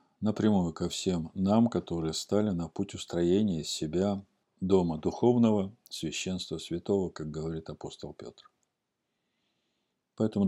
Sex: male